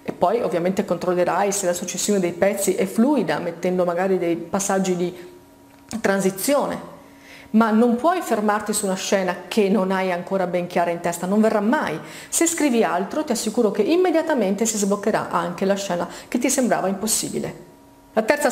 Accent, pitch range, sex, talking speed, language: native, 185-215 Hz, female, 170 wpm, Italian